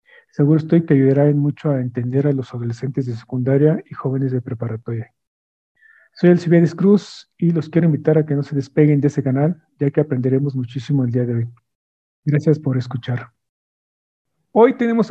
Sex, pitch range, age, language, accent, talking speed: male, 140-170 Hz, 50-69, Spanish, Mexican, 175 wpm